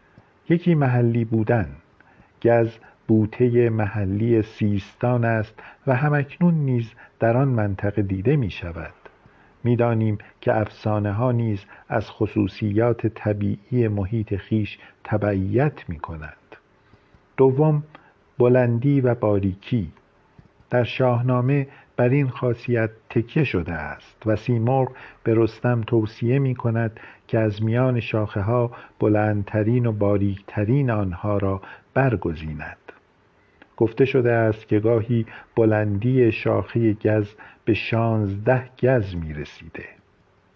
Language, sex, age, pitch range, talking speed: Persian, male, 50-69, 105-125 Hz, 110 wpm